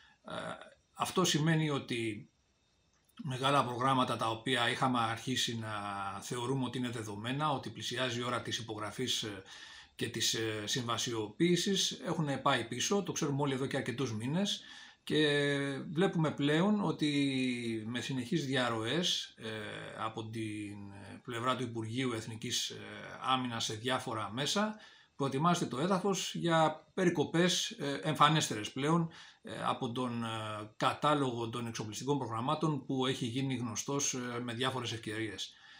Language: Greek